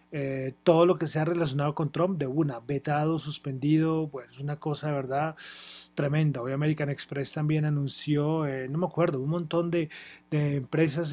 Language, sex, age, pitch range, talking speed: Spanish, male, 30-49, 135-160 Hz, 180 wpm